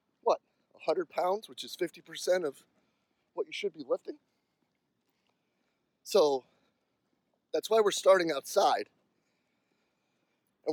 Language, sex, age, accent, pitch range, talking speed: English, male, 30-49, American, 150-220 Hz, 100 wpm